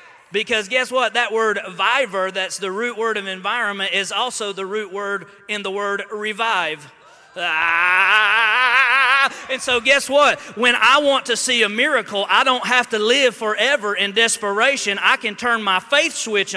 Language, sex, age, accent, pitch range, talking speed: English, male, 30-49, American, 220-275 Hz, 170 wpm